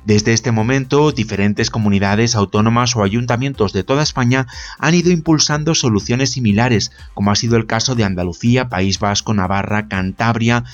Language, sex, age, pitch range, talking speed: Spanish, male, 30-49, 105-130 Hz, 150 wpm